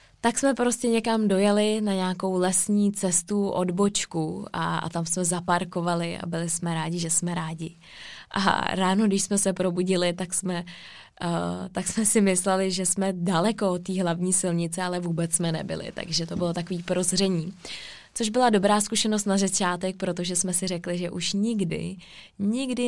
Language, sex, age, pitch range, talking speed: Czech, female, 20-39, 170-190 Hz, 165 wpm